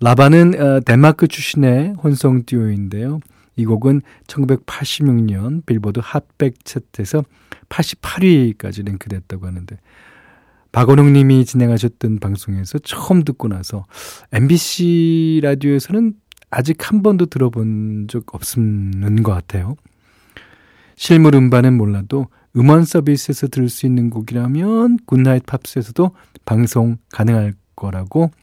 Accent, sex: native, male